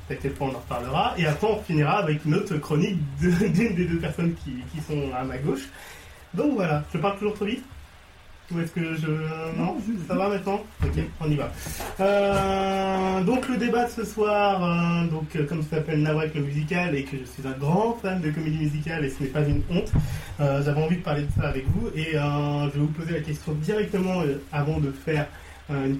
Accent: French